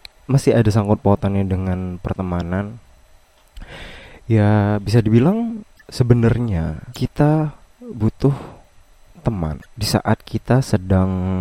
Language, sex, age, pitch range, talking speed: Indonesian, male, 20-39, 95-120 Hz, 90 wpm